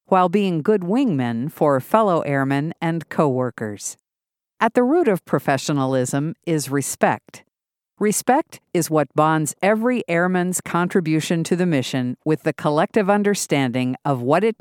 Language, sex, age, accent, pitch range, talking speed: English, female, 50-69, American, 140-205 Hz, 135 wpm